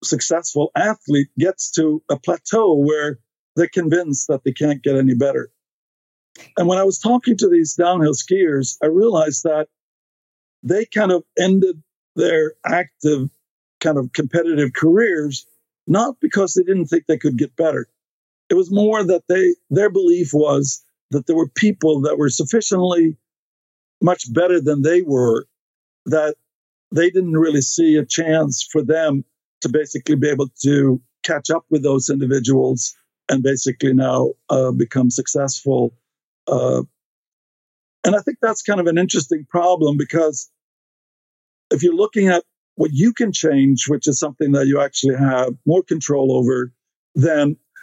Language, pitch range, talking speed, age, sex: English, 135-175 Hz, 150 wpm, 50-69, male